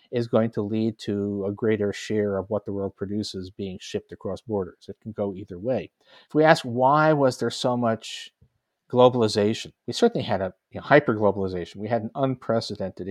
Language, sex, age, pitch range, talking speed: English, male, 50-69, 100-125 Hz, 190 wpm